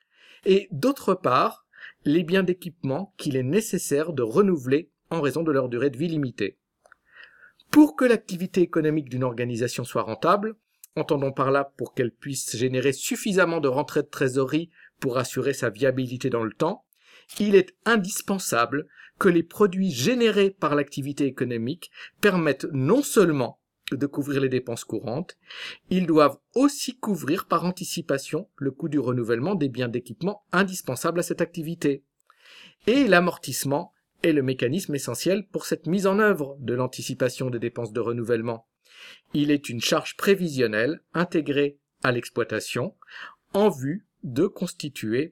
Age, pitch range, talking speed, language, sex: 50-69, 130-180 Hz, 145 wpm, French, male